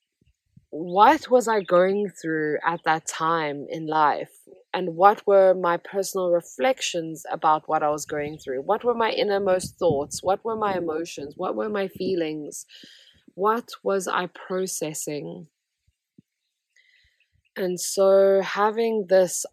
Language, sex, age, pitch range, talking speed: English, female, 20-39, 165-200 Hz, 130 wpm